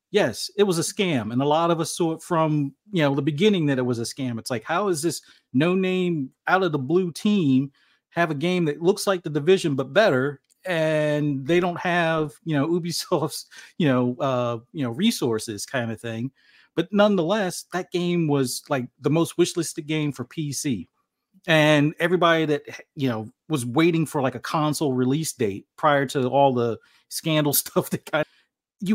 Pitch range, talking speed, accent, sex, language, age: 135-175 Hz, 190 wpm, American, male, English, 40-59